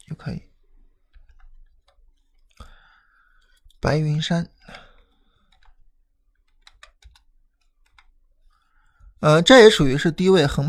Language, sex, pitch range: Chinese, male, 130-165 Hz